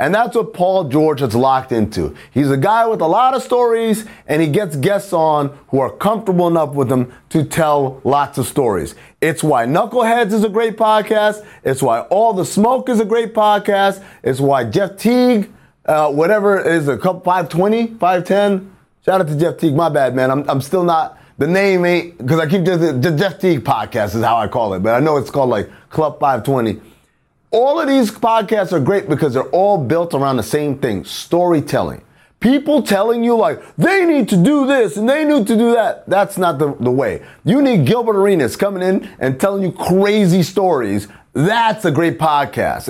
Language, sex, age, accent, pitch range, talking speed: English, male, 30-49, American, 145-210 Hz, 205 wpm